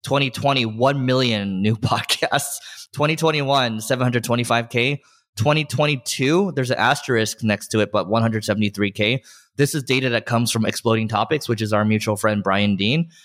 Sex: male